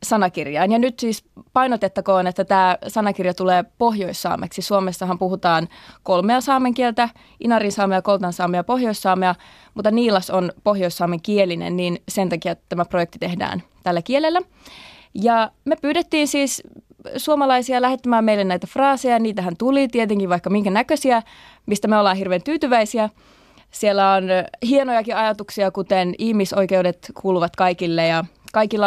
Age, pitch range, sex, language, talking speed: 20-39, 185-240 Hz, female, Finnish, 130 wpm